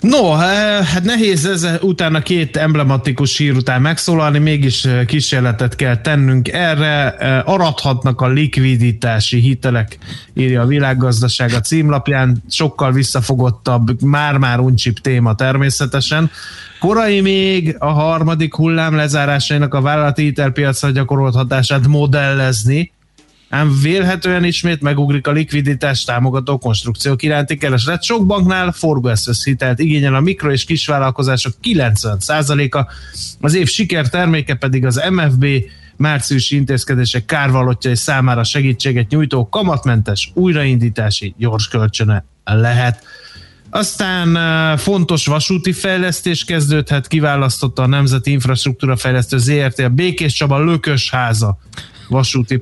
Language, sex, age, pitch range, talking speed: Hungarian, male, 20-39, 125-155 Hz, 105 wpm